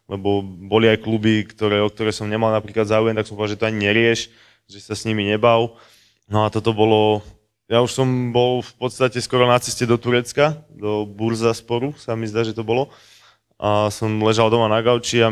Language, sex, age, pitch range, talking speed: Slovak, male, 20-39, 105-120 Hz, 210 wpm